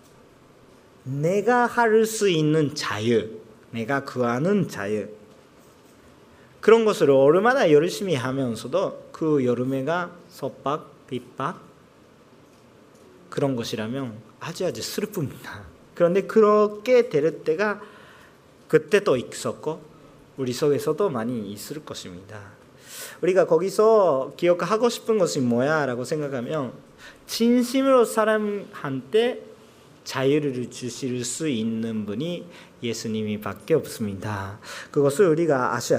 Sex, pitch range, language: male, 130-220 Hz, Korean